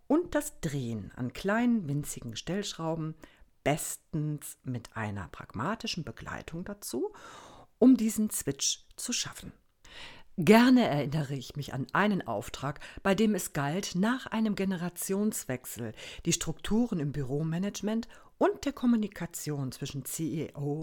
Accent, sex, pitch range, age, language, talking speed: German, female, 140-215 Hz, 50-69, German, 120 wpm